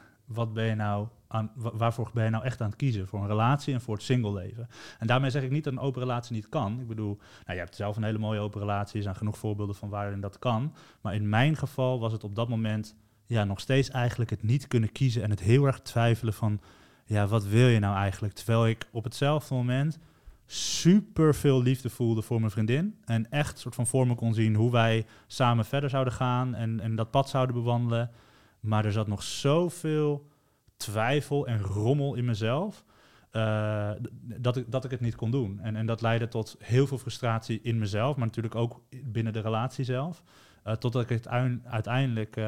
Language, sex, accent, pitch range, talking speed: Dutch, male, Dutch, 110-125 Hz, 215 wpm